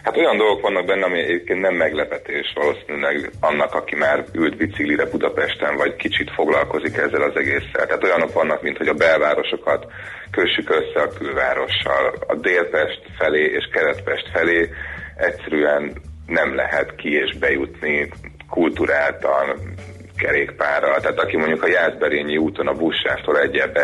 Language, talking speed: Hungarian, 140 wpm